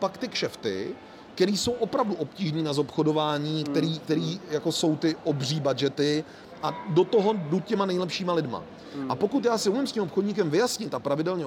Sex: male